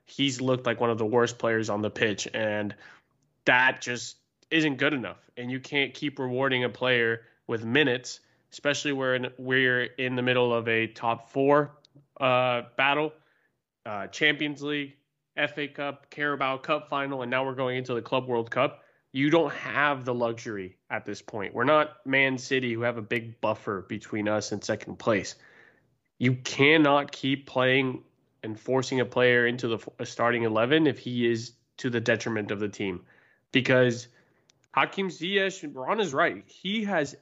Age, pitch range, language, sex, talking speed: 20-39, 120-150 Hz, English, male, 170 wpm